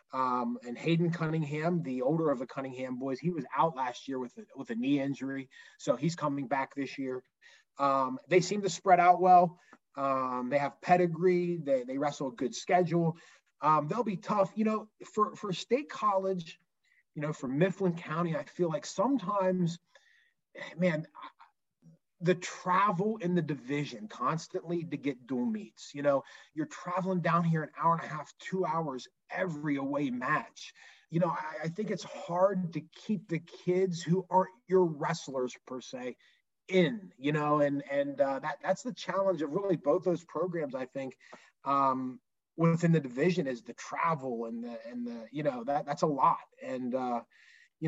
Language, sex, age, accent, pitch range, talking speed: English, male, 30-49, American, 135-180 Hz, 180 wpm